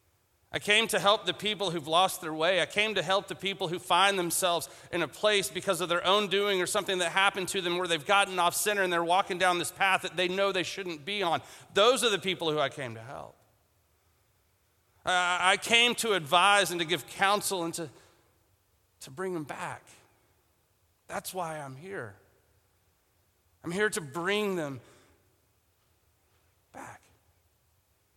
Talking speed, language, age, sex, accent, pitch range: 180 wpm, English, 40-59, male, American, 125-180 Hz